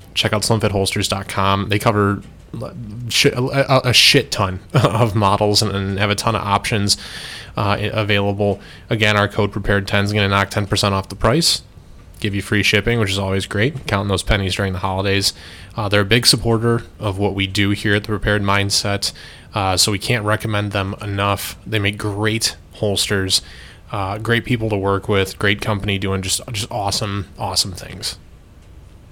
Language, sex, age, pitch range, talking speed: English, male, 20-39, 95-115 Hz, 175 wpm